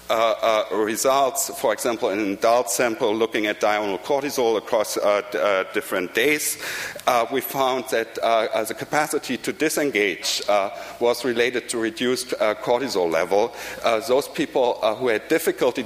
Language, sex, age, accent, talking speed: English, male, 60-79, German, 165 wpm